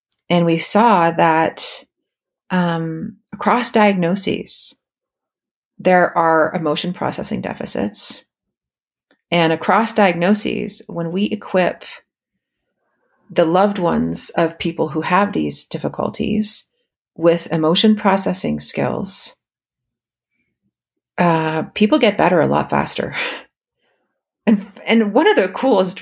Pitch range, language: 165-215 Hz, English